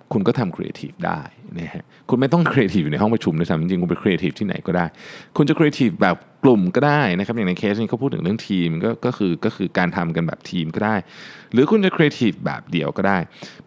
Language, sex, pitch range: Thai, male, 95-150 Hz